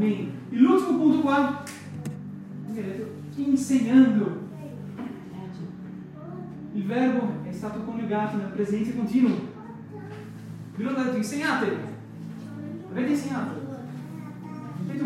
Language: Italian